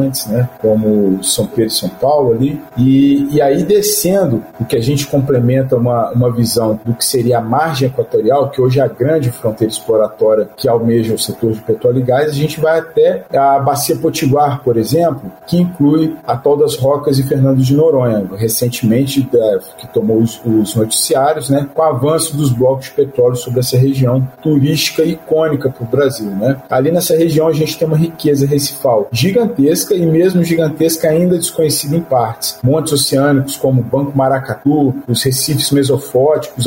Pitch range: 125-160 Hz